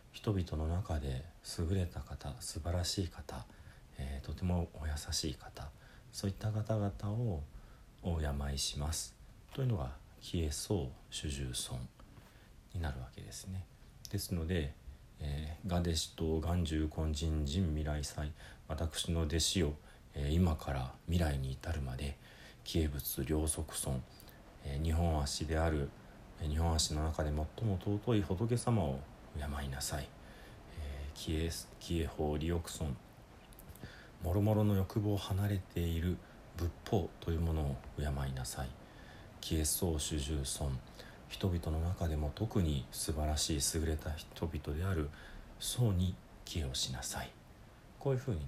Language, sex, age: Japanese, male, 40-59